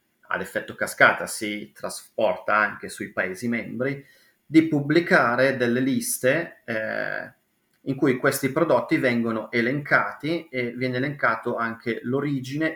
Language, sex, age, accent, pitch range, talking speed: Italian, male, 30-49, native, 110-130 Hz, 115 wpm